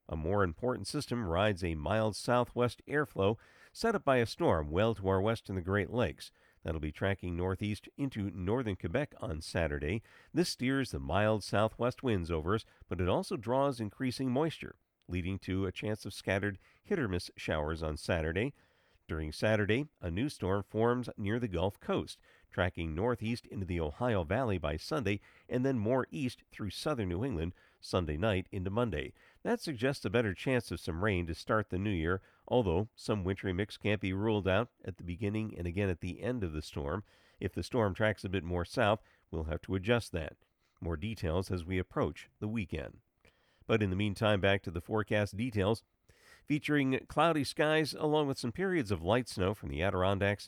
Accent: American